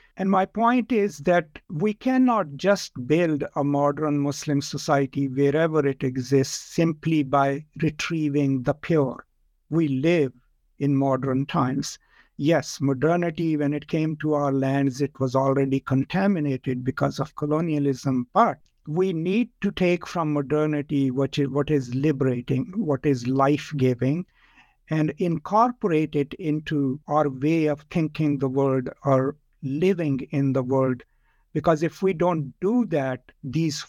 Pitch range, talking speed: 135-165 Hz, 135 wpm